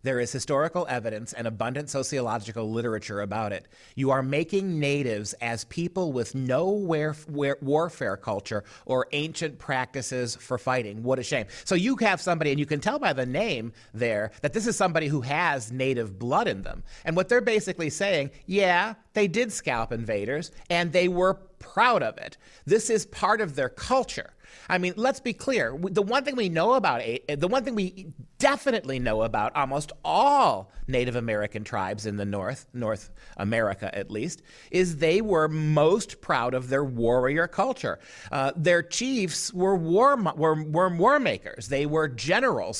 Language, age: English, 40-59